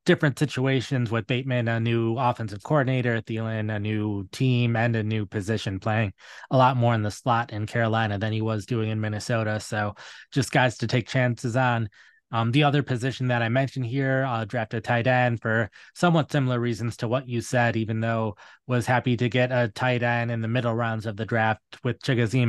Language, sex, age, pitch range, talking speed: English, male, 20-39, 110-125 Hz, 210 wpm